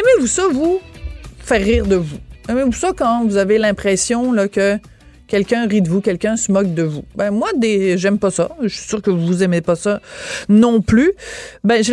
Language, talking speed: French, 210 wpm